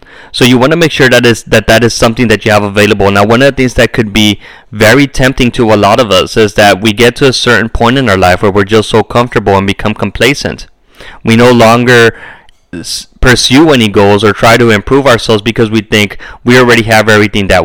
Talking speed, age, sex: 230 wpm, 20-39, male